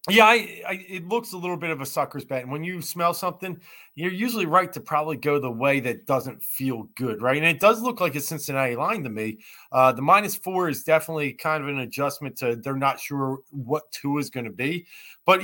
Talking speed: 235 wpm